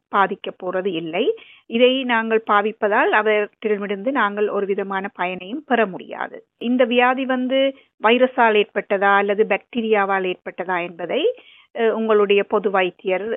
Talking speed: 110 wpm